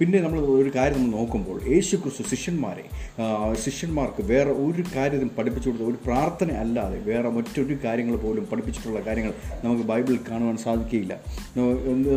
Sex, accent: male, native